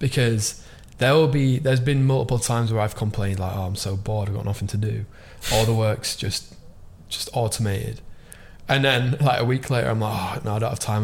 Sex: male